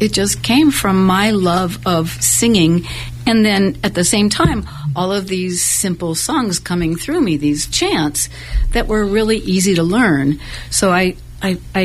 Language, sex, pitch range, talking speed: English, female, 155-195 Hz, 165 wpm